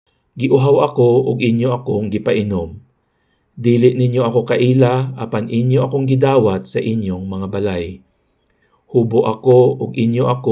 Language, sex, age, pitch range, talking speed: Filipino, male, 50-69, 110-135 Hz, 150 wpm